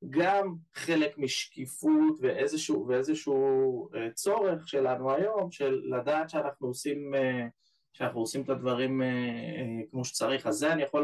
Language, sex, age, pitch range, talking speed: Hebrew, male, 20-39, 120-165 Hz, 115 wpm